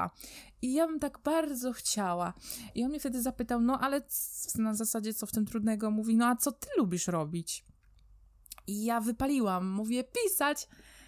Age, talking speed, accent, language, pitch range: 20-39, 170 wpm, native, Polish, 195-245 Hz